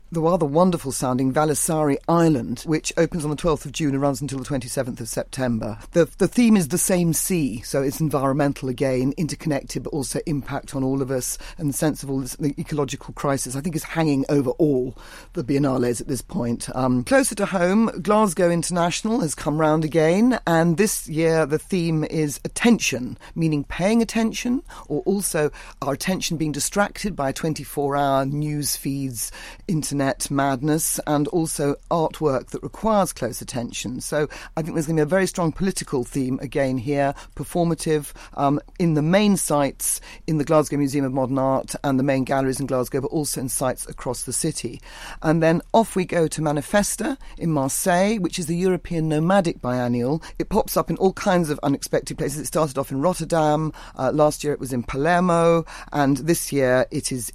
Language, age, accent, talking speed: English, 40-59, British, 185 wpm